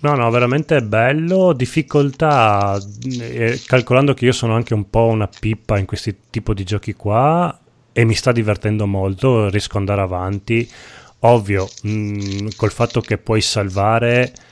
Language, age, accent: Italian, 30-49, native